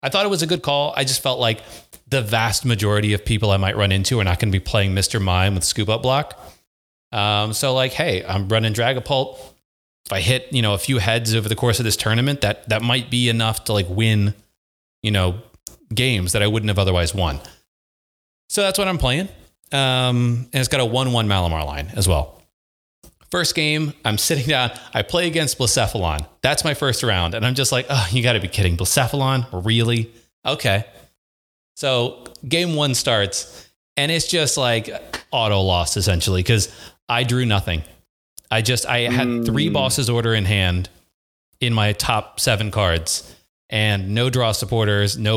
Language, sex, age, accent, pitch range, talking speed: English, male, 30-49, American, 100-125 Hz, 190 wpm